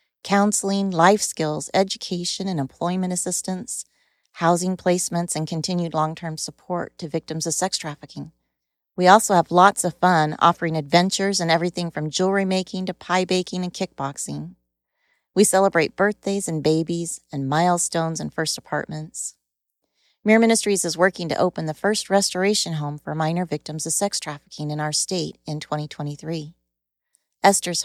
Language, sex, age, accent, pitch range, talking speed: English, female, 40-59, American, 155-190 Hz, 150 wpm